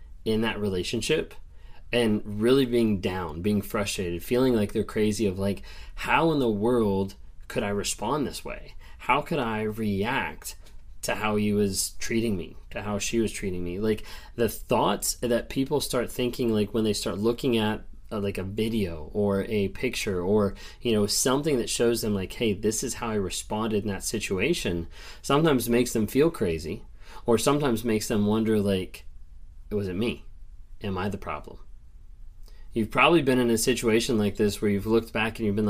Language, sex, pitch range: English, male, 95-115 Hz